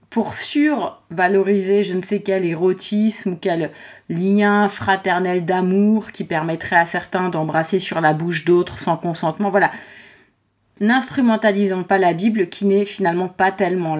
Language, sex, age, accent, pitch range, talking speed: French, female, 30-49, French, 180-215 Hz, 140 wpm